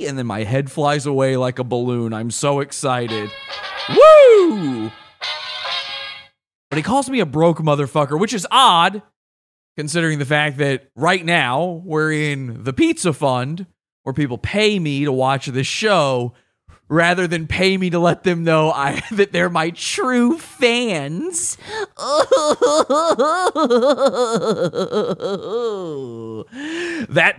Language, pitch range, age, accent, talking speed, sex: English, 130-175 Hz, 30-49, American, 125 wpm, male